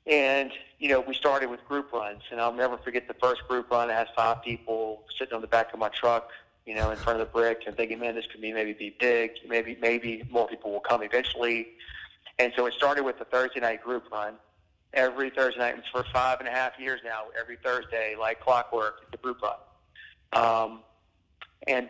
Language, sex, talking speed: English, male, 215 wpm